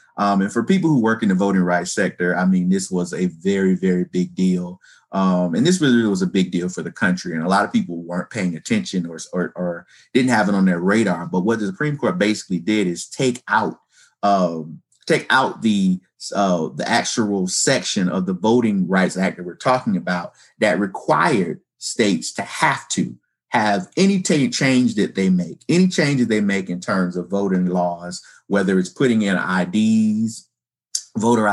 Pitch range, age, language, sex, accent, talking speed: 90-120 Hz, 30-49, English, male, American, 190 wpm